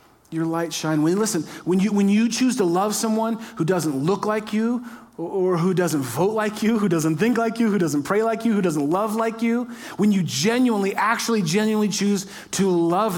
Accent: American